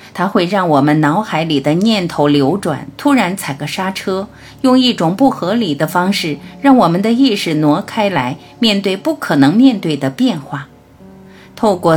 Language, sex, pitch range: Chinese, female, 145-220 Hz